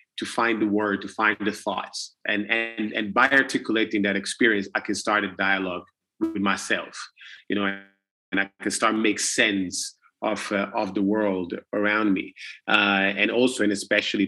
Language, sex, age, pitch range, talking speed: English, male, 30-49, 100-130 Hz, 175 wpm